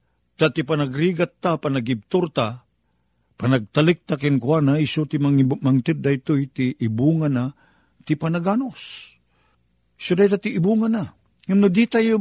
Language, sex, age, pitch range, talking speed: Filipino, male, 50-69, 115-160 Hz, 145 wpm